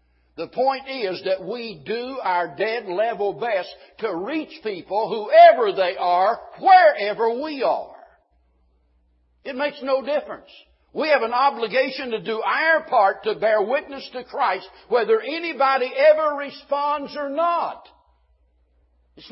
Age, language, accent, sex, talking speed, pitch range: 60-79, English, American, male, 130 wpm, 180-285 Hz